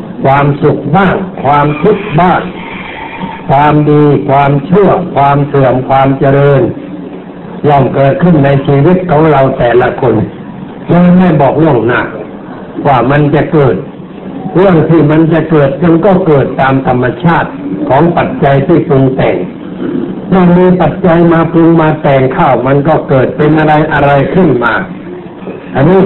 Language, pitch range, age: Thai, 140-180 Hz, 60-79